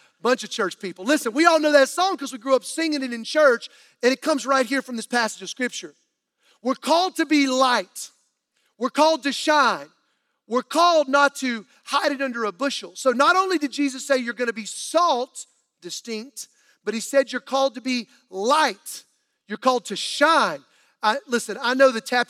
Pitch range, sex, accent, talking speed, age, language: 225-280 Hz, male, American, 200 wpm, 40-59, English